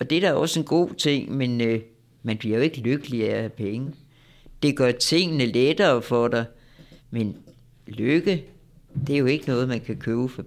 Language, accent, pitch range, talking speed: Danish, native, 115-140 Hz, 210 wpm